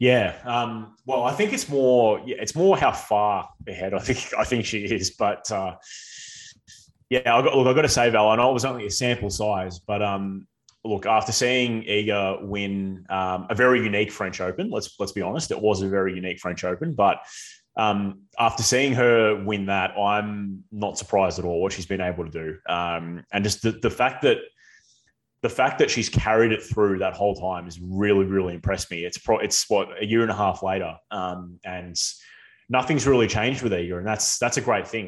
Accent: Australian